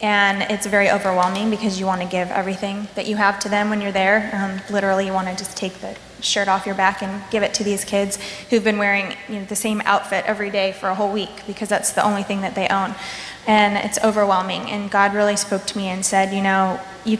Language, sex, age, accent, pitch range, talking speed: English, female, 20-39, American, 195-210 Hz, 245 wpm